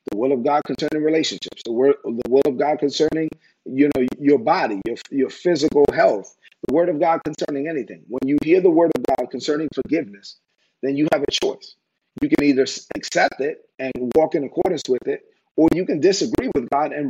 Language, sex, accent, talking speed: English, male, American, 210 wpm